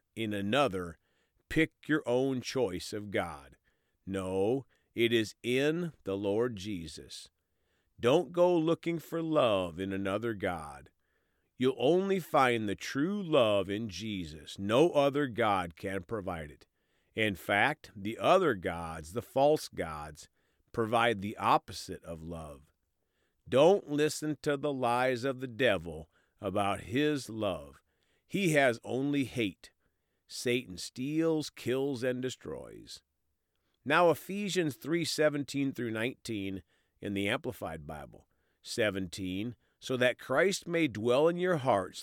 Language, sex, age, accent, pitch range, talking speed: English, male, 40-59, American, 95-145 Hz, 125 wpm